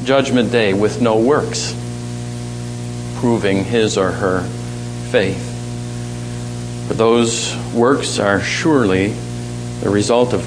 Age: 50-69